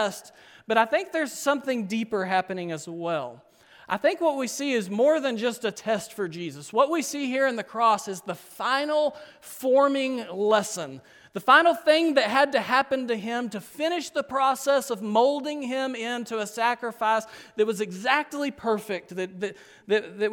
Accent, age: American, 40-59